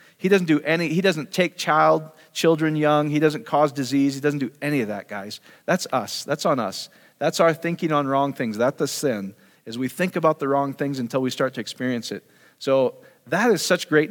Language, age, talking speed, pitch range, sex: English, 40-59, 225 wpm, 135-175 Hz, male